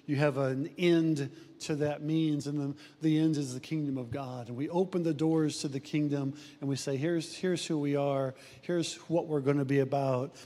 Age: 50-69